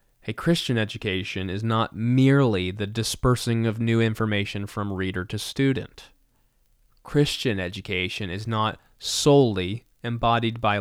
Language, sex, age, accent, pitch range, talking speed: English, male, 20-39, American, 100-120 Hz, 120 wpm